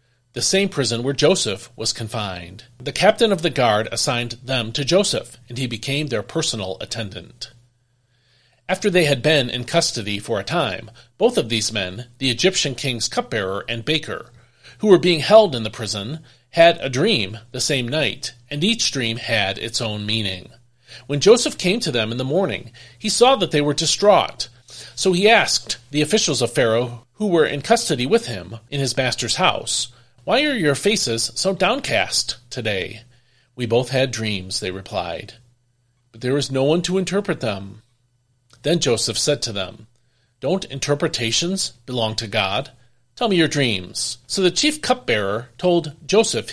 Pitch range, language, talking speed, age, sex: 115-155 Hz, English, 170 wpm, 40-59, male